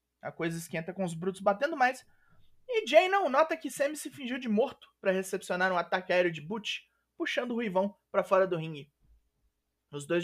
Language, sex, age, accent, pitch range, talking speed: Portuguese, male, 20-39, Brazilian, 180-260 Hz, 200 wpm